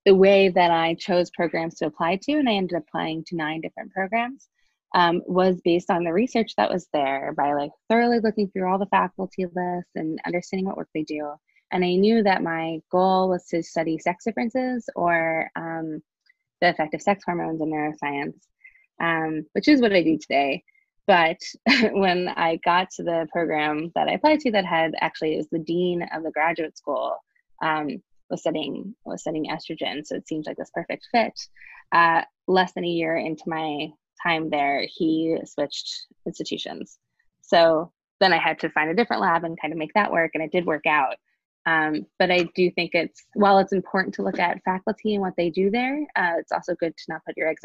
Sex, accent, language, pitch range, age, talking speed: female, American, English, 160-190 Hz, 20-39, 205 wpm